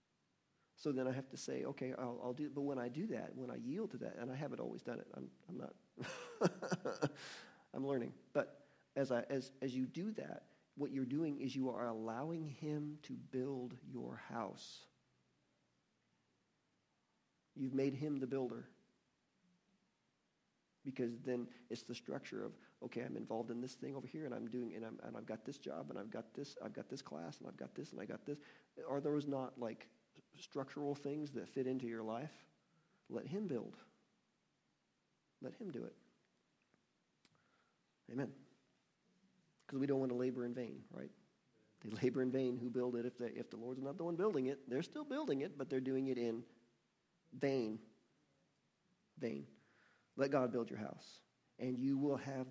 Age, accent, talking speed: 40-59, American, 185 wpm